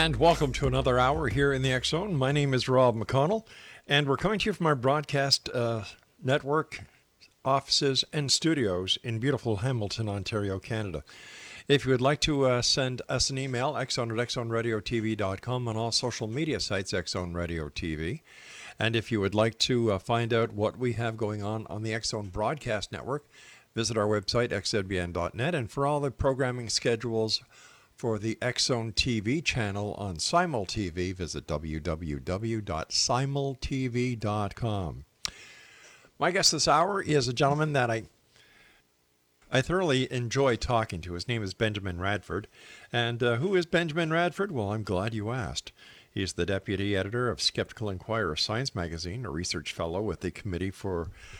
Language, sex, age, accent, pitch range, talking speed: English, male, 50-69, American, 100-135 Hz, 160 wpm